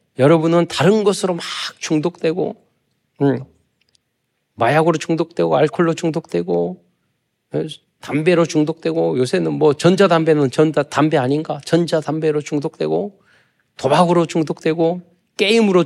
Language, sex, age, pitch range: Korean, male, 40-59, 150-210 Hz